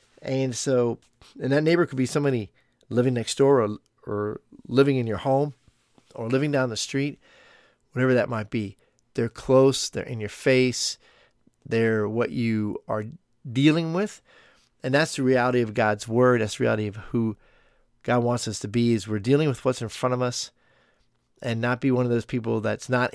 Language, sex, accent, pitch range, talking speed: English, male, American, 110-130 Hz, 190 wpm